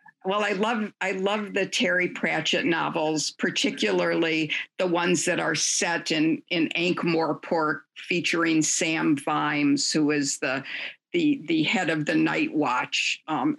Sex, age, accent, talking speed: female, 50-69, American, 145 wpm